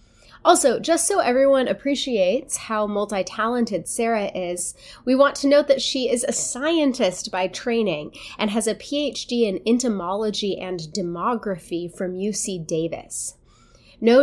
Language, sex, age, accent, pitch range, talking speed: English, female, 20-39, American, 185-245 Hz, 135 wpm